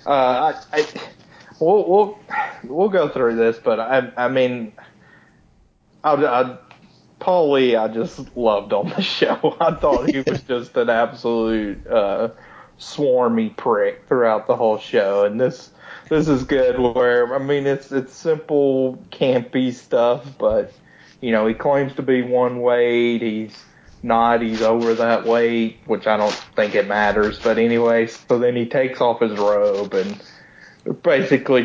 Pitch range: 110-130 Hz